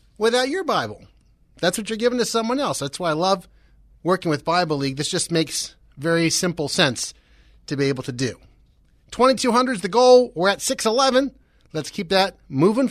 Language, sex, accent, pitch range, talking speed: English, male, American, 140-200 Hz, 185 wpm